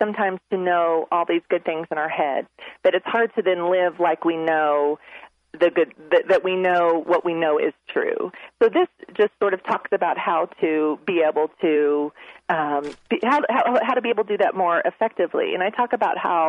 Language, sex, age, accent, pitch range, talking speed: English, female, 40-59, American, 160-205 Hz, 210 wpm